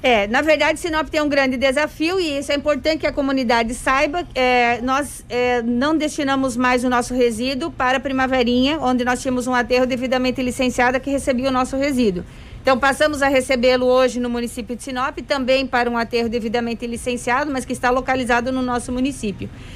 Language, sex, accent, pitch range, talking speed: Portuguese, female, Brazilian, 250-290 Hz, 190 wpm